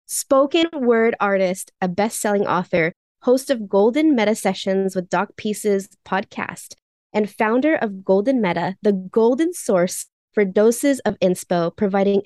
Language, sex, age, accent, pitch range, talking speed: English, female, 20-39, American, 195-255 Hz, 135 wpm